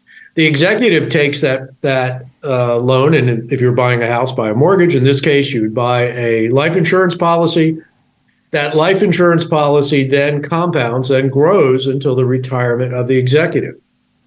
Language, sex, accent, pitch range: English, male, American, 125-155 Hz